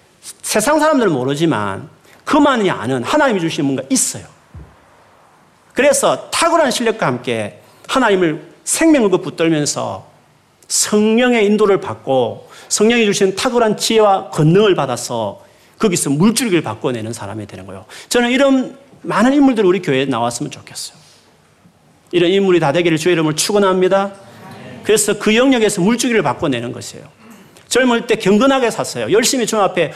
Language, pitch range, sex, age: Korean, 150-235 Hz, male, 40-59